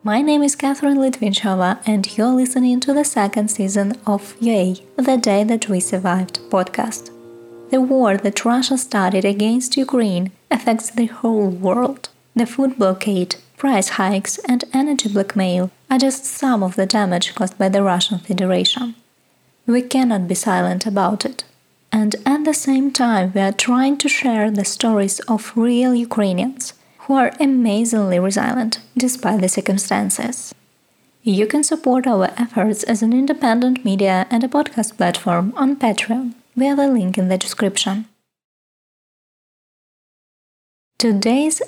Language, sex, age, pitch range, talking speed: Ukrainian, female, 20-39, 195-255 Hz, 145 wpm